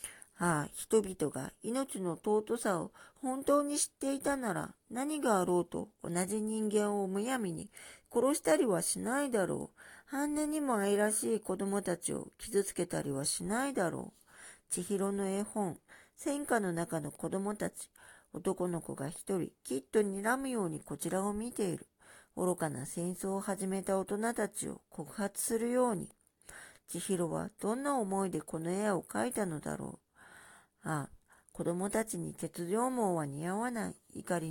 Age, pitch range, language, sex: 40-59, 170-220 Hz, Japanese, female